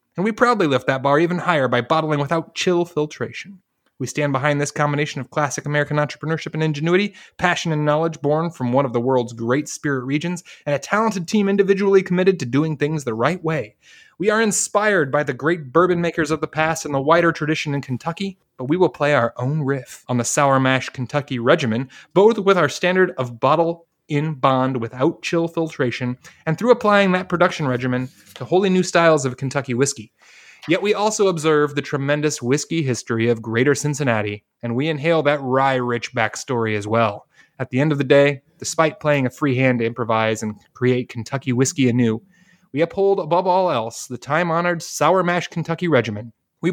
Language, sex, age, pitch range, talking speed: English, male, 30-49, 125-170 Hz, 195 wpm